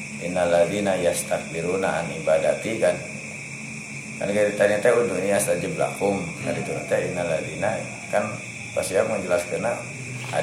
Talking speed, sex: 130 wpm, male